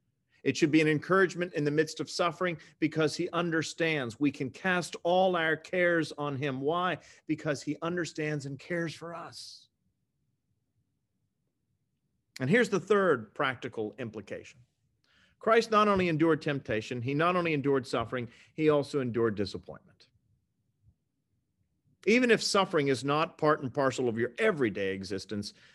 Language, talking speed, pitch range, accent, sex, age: English, 140 wpm, 125-165 Hz, American, male, 40-59